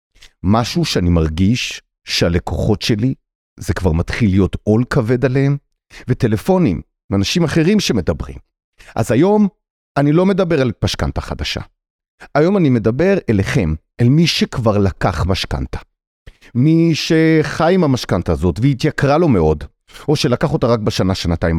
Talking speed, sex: 130 wpm, male